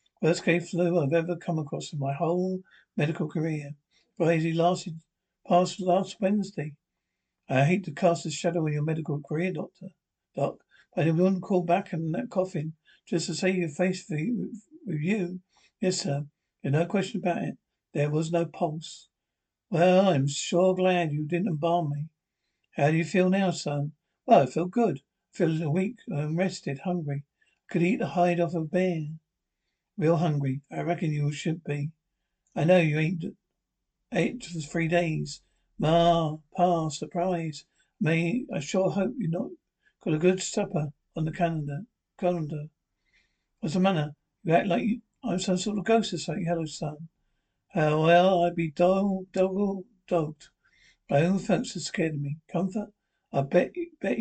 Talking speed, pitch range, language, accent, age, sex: 170 wpm, 155-185 Hz, English, British, 60-79, male